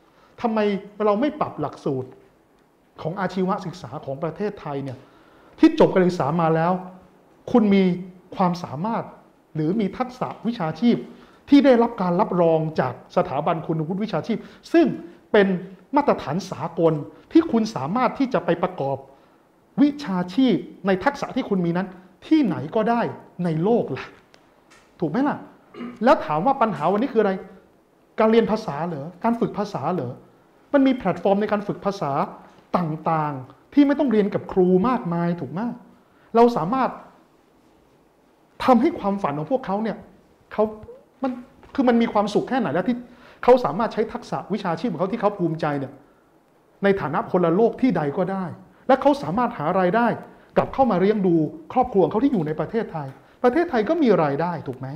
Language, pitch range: Thai, 165-230 Hz